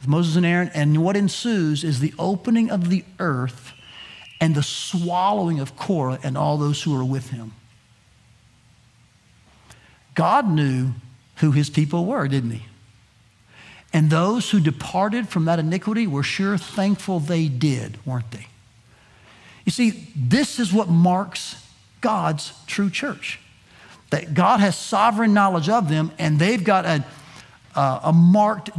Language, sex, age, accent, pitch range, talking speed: English, male, 50-69, American, 130-205 Hz, 145 wpm